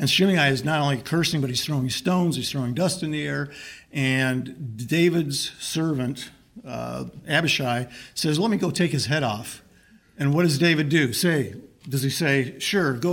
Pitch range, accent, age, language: 135-160 Hz, American, 50-69, English